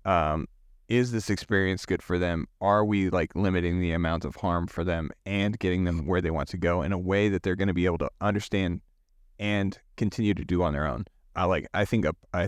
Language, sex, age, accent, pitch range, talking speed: English, male, 30-49, American, 85-105 Hz, 235 wpm